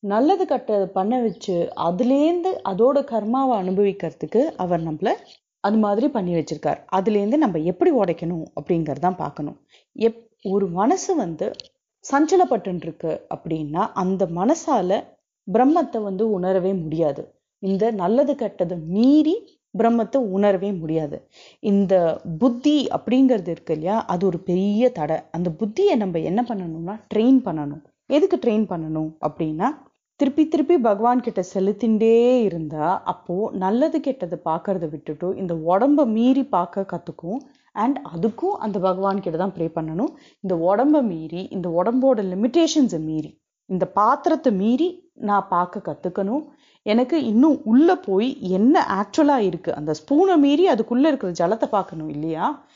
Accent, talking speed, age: native, 120 wpm, 30-49